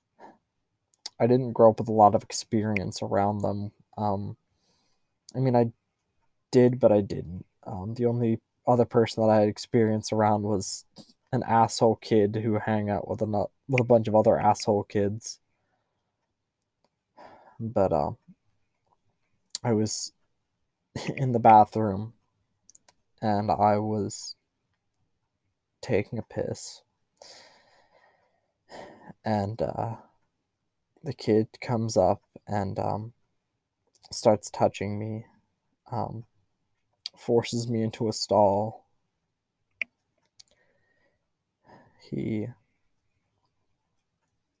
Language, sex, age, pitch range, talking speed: English, male, 20-39, 100-115 Hz, 100 wpm